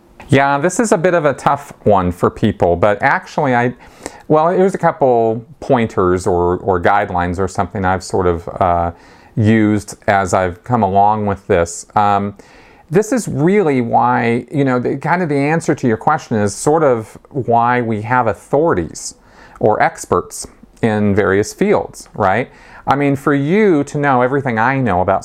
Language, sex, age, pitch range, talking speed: English, male, 40-59, 95-125 Hz, 170 wpm